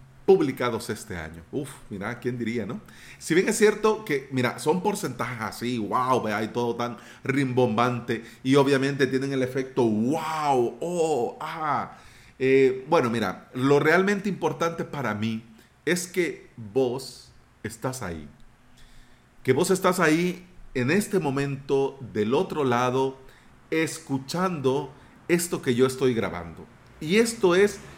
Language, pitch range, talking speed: Spanish, 120-165 Hz, 135 wpm